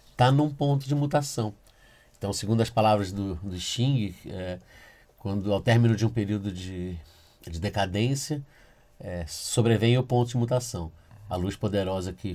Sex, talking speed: male, 155 wpm